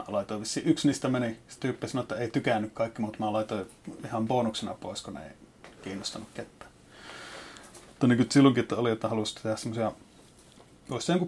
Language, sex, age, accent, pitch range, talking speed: Finnish, male, 30-49, native, 110-135 Hz, 145 wpm